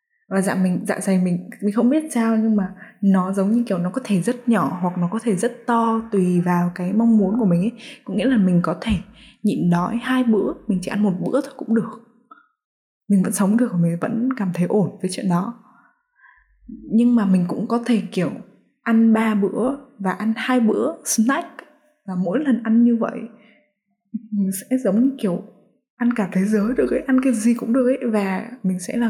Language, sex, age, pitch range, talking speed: Vietnamese, female, 10-29, 180-235 Hz, 225 wpm